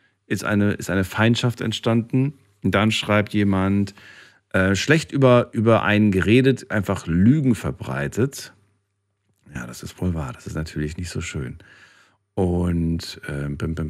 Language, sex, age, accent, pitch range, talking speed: German, male, 40-59, German, 90-105 Hz, 145 wpm